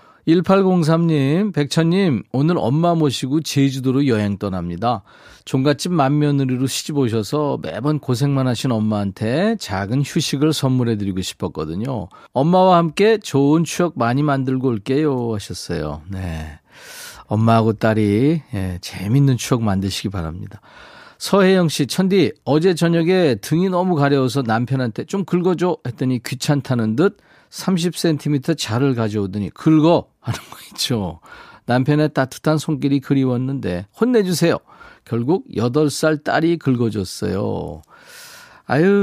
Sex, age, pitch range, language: male, 40-59, 115-165 Hz, Korean